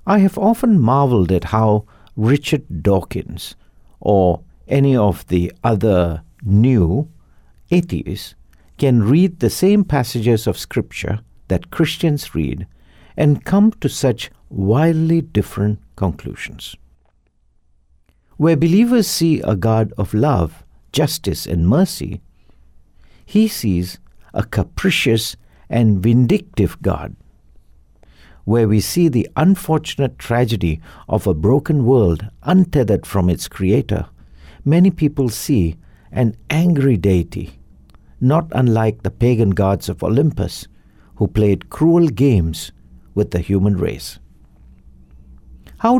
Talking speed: 110 wpm